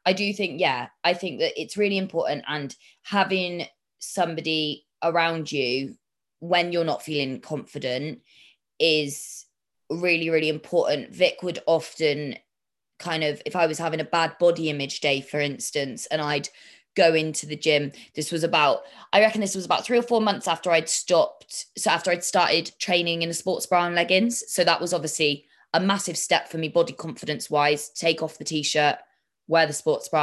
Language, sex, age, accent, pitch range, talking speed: English, female, 20-39, British, 145-180 Hz, 185 wpm